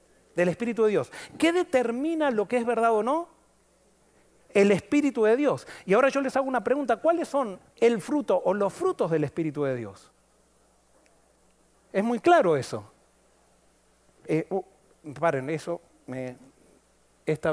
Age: 40-59